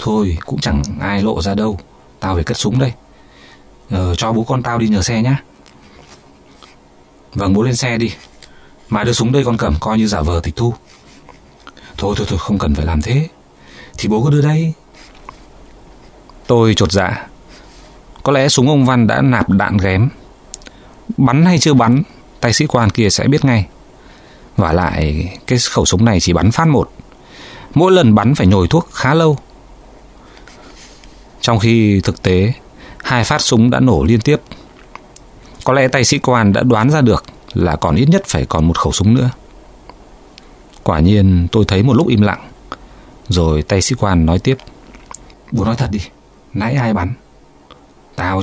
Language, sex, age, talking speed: Vietnamese, male, 20-39, 180 wpm